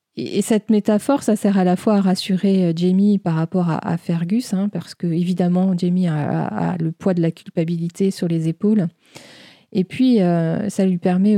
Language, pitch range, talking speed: French, 170-205 Hz, 190 wpm